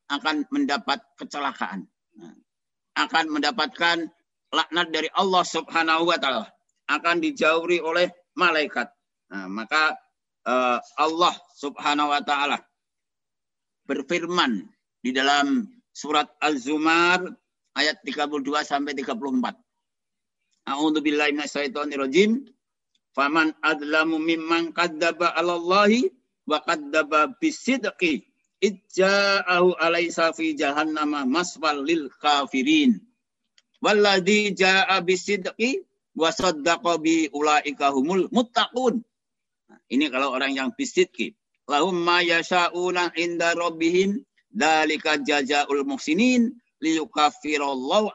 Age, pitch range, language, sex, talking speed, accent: 50-69, 150-190 Hz, Indonesian, male, 85 wpm, native